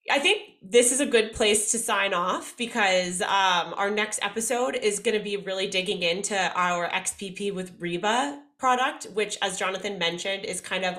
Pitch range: 175-220 Hz